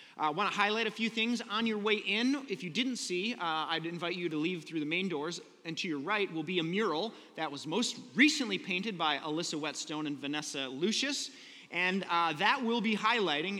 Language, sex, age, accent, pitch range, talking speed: English, male, 30-49, American, 165-215 Hz, 220 wpm